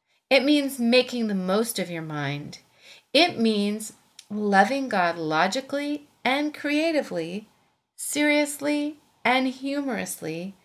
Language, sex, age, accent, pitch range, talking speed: English, female, 40-59, American, 185-270 Hz, 100 wpm